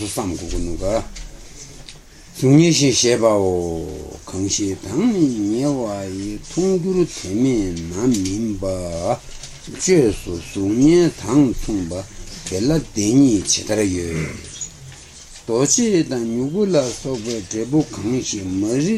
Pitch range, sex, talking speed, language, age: 95-140 Hz, male, 70 wpm, Italian, 60-79